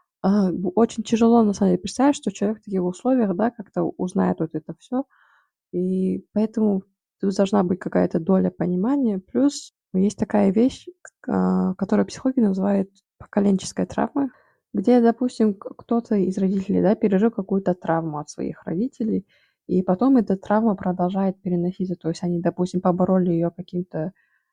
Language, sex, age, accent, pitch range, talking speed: Russian, female, 20-39, native, 180-205 Hz, 145 wpm